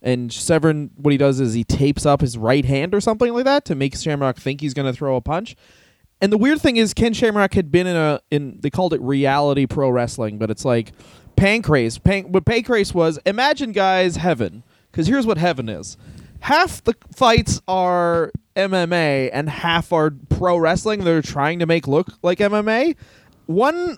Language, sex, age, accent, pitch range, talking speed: English, male, 20-39, American, 145-210 Hz, 195 wpm